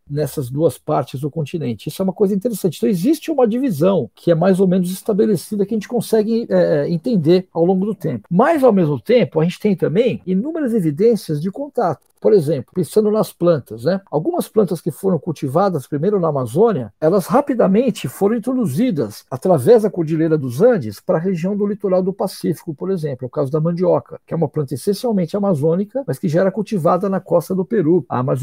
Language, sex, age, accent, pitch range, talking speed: Portuguese, male, 60-79, Brazilian, 155-200 Hz, 200 wpm